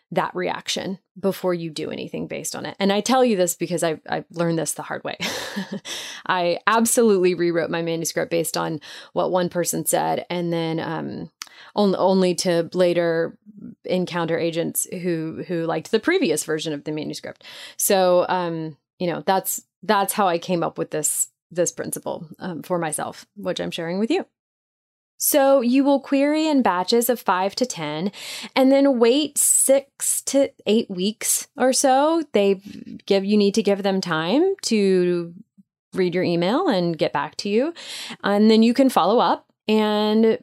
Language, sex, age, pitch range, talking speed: English, female, 30-49, 170-235 Hz, 170 wpm